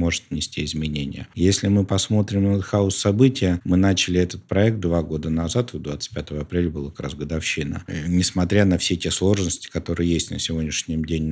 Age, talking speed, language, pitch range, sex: 50-69, 165 wpm, Russian, 80-95 Hz, male